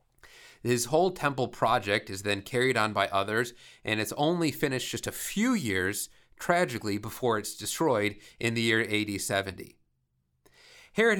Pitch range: 110-140 Hz